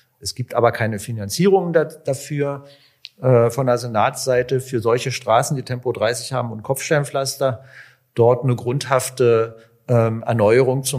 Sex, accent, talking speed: male, German, 135 wpm